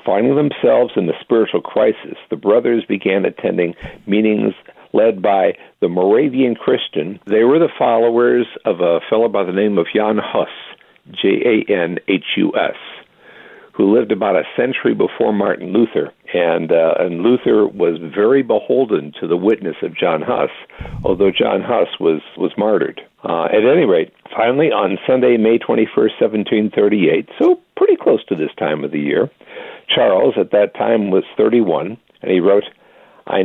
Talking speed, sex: 155 wpm, male